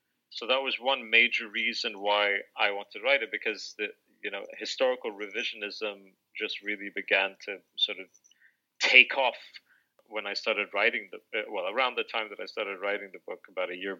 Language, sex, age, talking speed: English, male, 30-49, 190 wpm